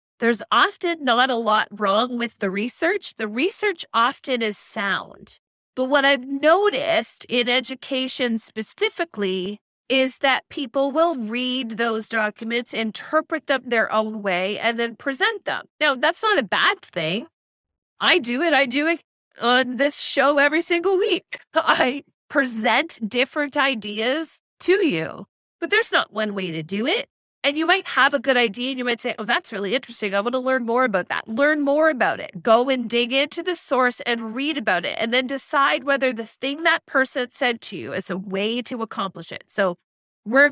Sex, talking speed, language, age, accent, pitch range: female, 185 wpm, English, 30-49, American, 225-300 Hz